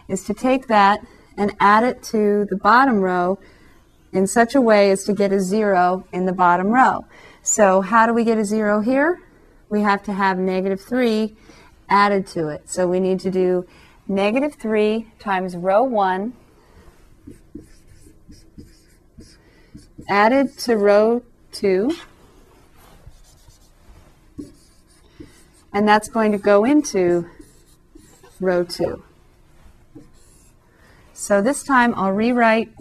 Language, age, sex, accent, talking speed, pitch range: English, 30-49, female, American, 125 wpm, 180-220 Hz